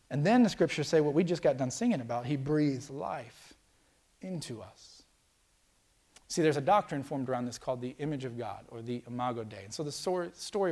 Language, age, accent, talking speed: English, 30-49, American, 205 wpm